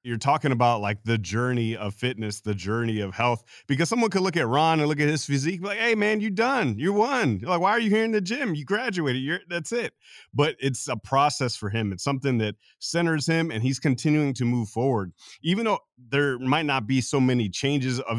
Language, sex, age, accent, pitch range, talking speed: English, male, 30-49, American, 115-150 Hz, 230 wpm